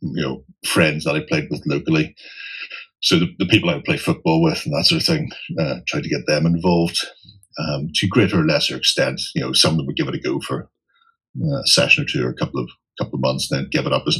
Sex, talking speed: male, 260 wpm